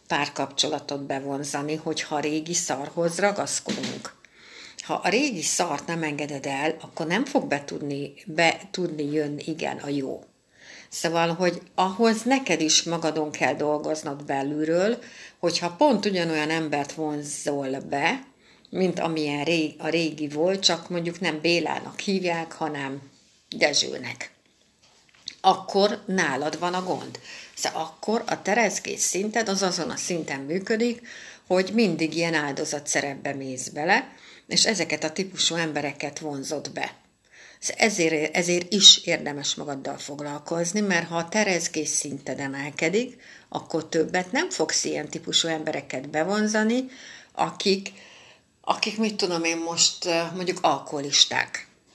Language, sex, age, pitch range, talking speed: Hungarian, female, 60-79, 150-185 Hz, 125 wpm